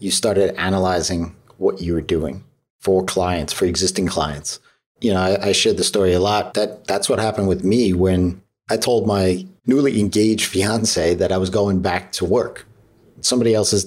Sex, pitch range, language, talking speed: male, 95-105 Hz, English, 185 wpm